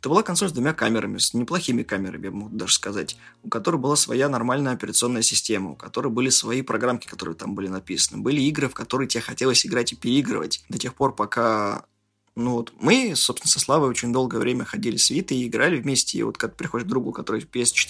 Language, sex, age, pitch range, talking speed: Russian, male, 20-39, 110-130 Hz, 220 wpm